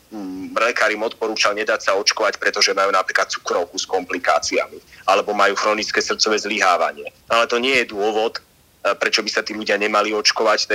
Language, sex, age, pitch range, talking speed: Slovak, male, 30-49, 105-125 Hz, 165 wpm